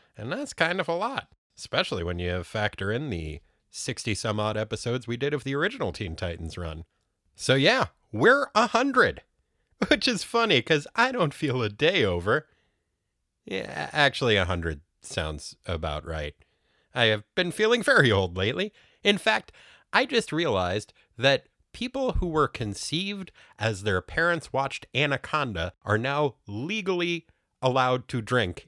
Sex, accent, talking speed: male, American, 145 wpm